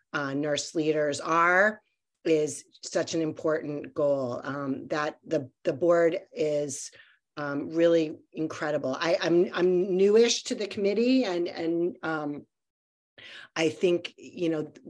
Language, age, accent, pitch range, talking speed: English, 40-59, American, 150-180 Hz, 130 wpm